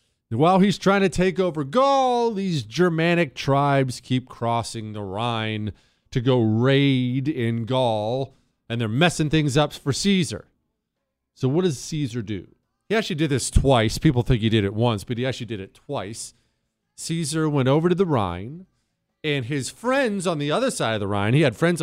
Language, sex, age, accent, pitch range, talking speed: English, male, 40-59, American, 120-180 Hz, 185 wpm